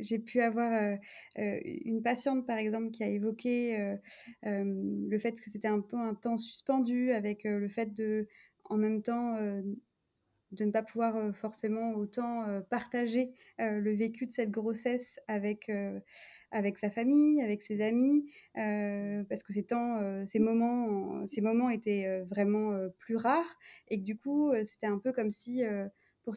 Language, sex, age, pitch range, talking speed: French, female, 20-39, 210-245 Hz, 155 wpm